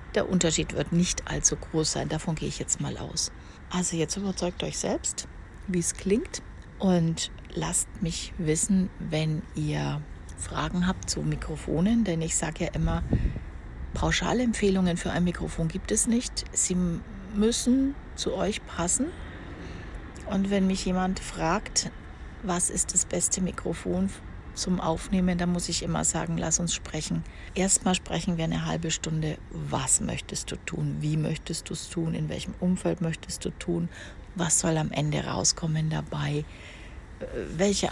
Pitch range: 150-185 Hz